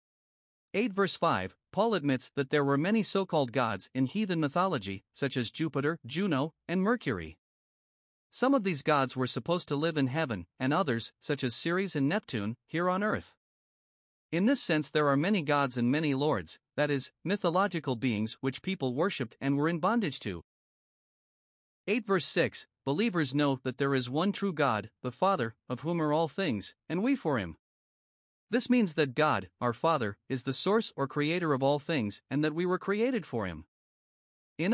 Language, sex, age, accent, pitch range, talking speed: English, male, 50-69, American, 130-175 Hz, 185 wpm